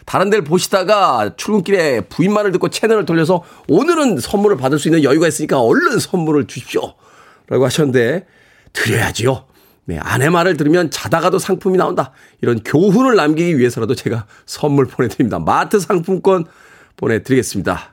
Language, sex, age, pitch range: Korean, male, 40-59, 135-200 Hz